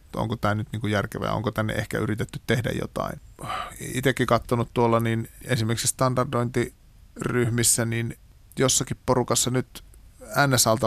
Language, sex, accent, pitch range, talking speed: Finnish, male, native, 110-125 Hz, 120 wpm